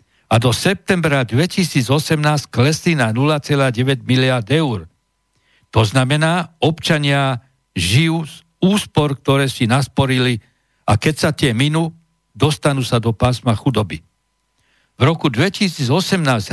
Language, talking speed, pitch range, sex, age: Slovak, 115 wpm, 125-160 Hz, male, 60-79